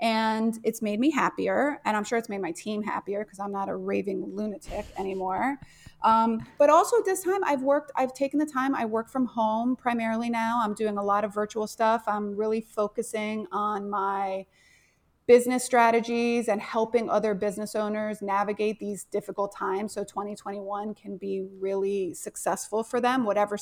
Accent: American